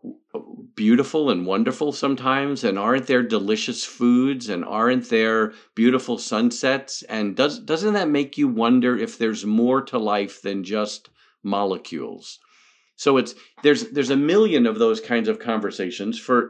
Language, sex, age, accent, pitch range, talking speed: English, male, 50-69, American, 110-165 Hz, 150 wpm